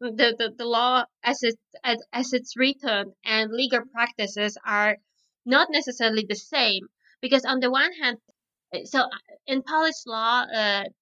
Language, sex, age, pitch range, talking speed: English, female, 20-39, 220-255 Hz, 150 wpm